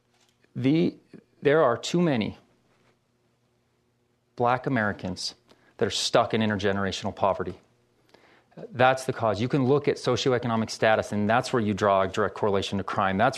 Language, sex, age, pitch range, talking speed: English, male, 30-49, 110-135 Hz, 150 wpm